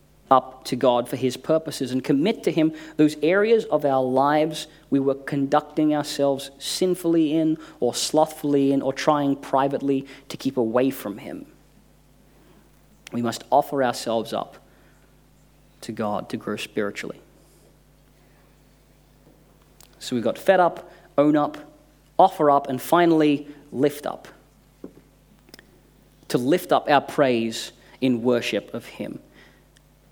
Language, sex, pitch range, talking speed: English, male, 120-150 Hz, 130 wpm